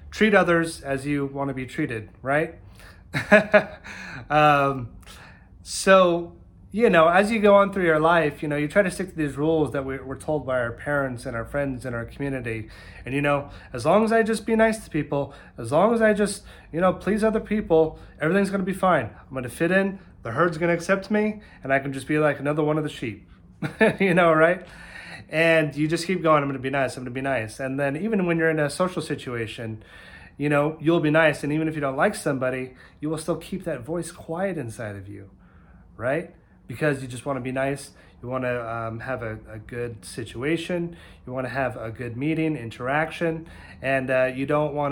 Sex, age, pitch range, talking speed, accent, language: male, 30-49, 125-170 Hz, 225 wpm, American, English